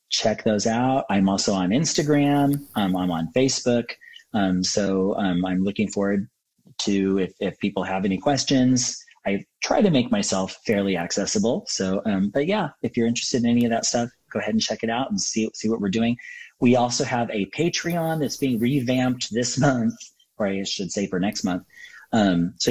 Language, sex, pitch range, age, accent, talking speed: English, male, 95-135 Hz, 30-49, American, 195 wpm